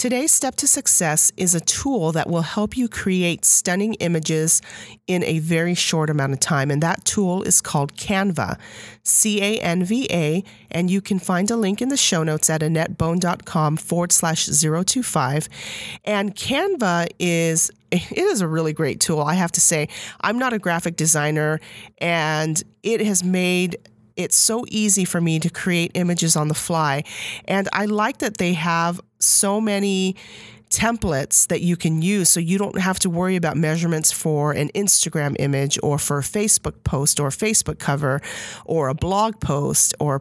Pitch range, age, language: 155-195 Hz, 40-59, English